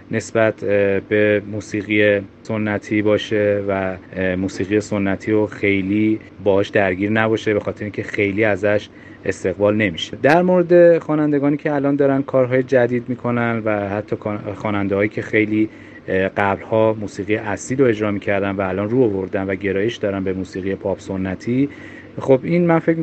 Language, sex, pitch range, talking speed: Persian, male, 100-120 Hz, 145 wpm